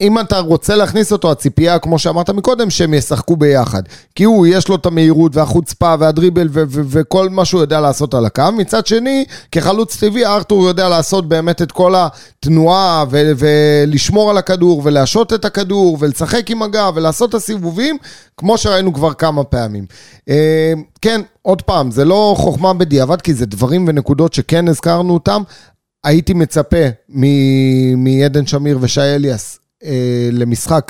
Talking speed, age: 150 wpm, 30-49